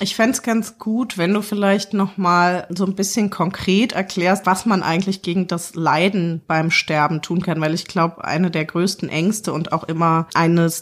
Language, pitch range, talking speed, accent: English, 160-185 Hz, 195 wpm, German